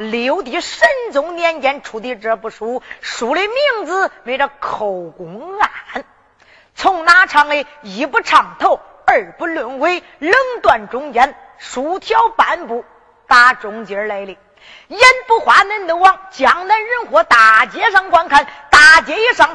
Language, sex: Chinese, female